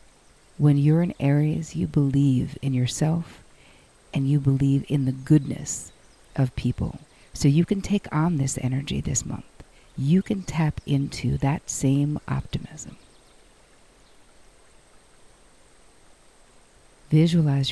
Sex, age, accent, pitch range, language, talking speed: female, 50-69, American, 135-150 Hz, English, 110 wpm